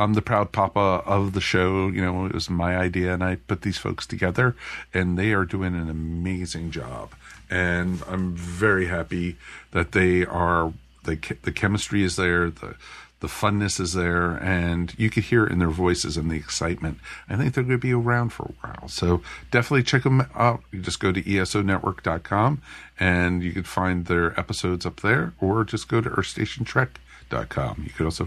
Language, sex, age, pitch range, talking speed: English, male, 50-69, 90-110 Hz, 195 wpm